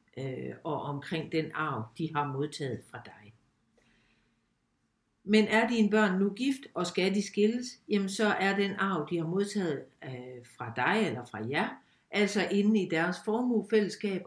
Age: 60-79